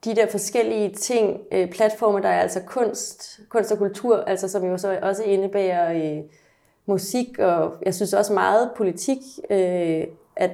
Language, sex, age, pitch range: Danish, female, 30-49, 185-210 Hz